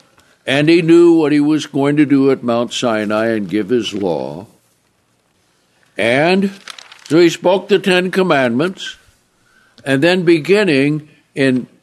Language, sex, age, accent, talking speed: English, male, 60-79, American, 135 wpm